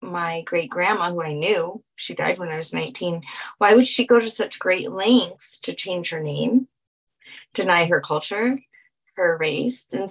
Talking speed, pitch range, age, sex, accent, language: 180 wpm, 180-270 Hz, 20-39, female, American, English